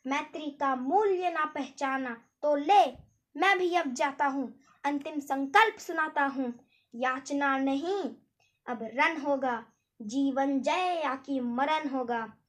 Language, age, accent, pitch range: Hindi, 20-39, native, 255-305 Hz